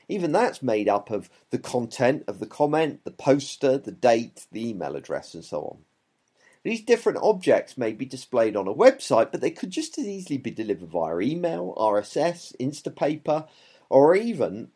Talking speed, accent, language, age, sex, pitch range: 175 wpm, British, English, 40-59, male, 120-190 Hz